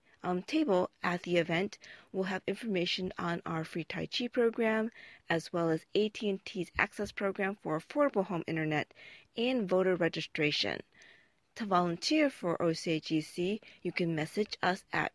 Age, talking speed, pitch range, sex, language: 40-59, 140 wpm, 165-210 Hz, female, English